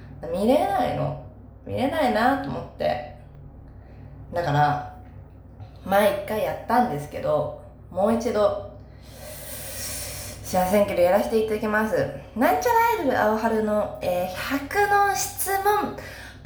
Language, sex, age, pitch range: Japanese, female, 20-39, 145-235 Hz